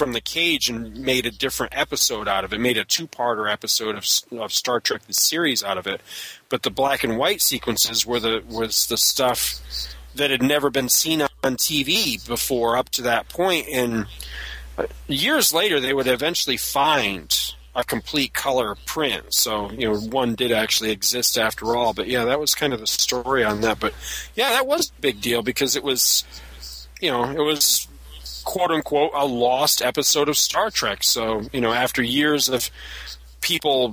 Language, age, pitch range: English, 40-59, 110-140 Hz